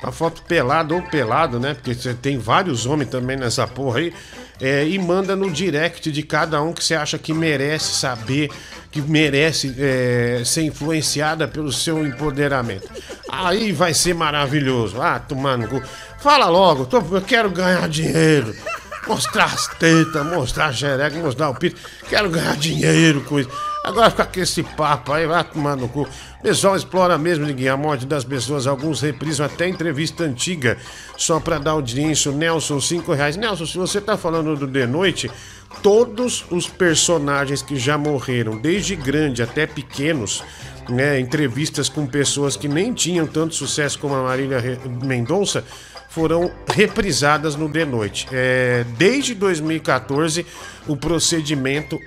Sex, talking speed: male, 155 wpm